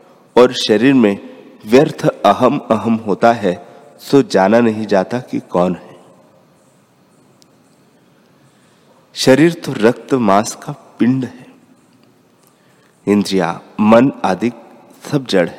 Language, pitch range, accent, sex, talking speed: Hindi, 100-130 Hz, native, male, 105 wpm